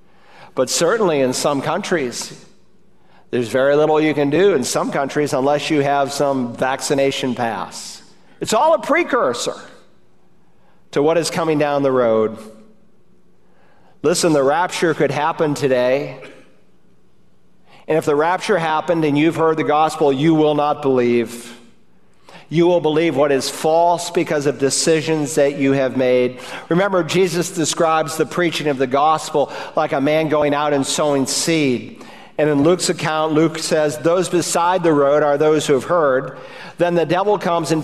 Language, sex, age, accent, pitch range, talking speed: English, male, 50-69, American, 135-170 Hz, 160 wpm